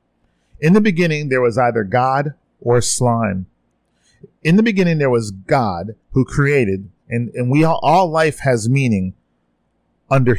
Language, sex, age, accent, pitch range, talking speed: English, male, 40-59, American, 100-130 Hz, 150 wpm